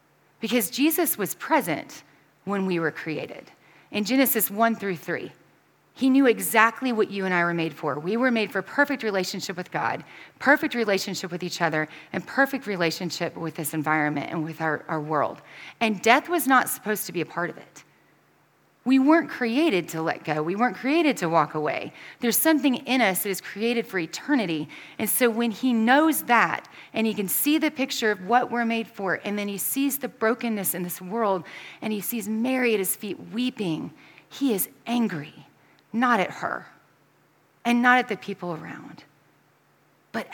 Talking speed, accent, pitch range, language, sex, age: 185 wpm, American, 175-250 Hz, English, female, 30-49